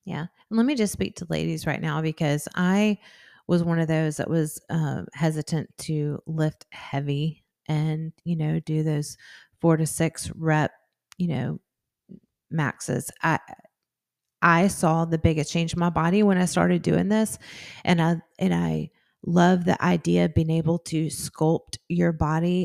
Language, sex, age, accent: English, female, 30-49, American